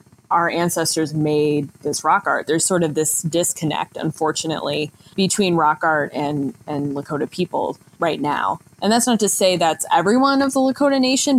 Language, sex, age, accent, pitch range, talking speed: English, female, 20-39, American, 150-180 Hz, 170 wpm